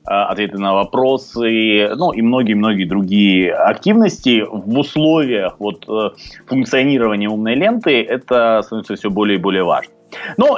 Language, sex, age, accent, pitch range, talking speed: Russian, male, 20-39, native, 110-145 Hz, 130 wpm